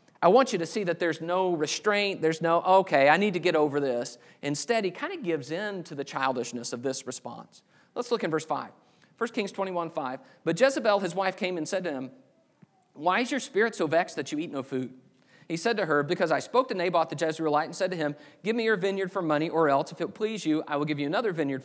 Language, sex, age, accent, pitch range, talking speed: English, male, 40-59, American, 145-190 Hz, 255 wpm